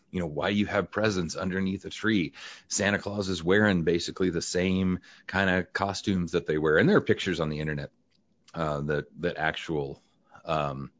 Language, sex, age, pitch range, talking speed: English, male, 40-59, 80-90 Hz, 185 wpm